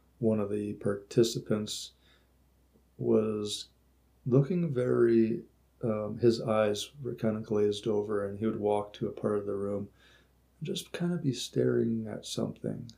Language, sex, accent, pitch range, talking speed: English, male, American, 100-115 Hz, 155 wpm